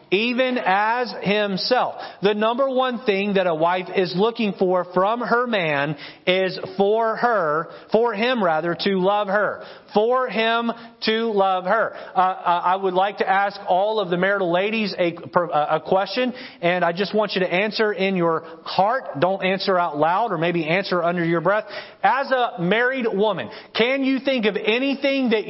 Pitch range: 185-245 Hz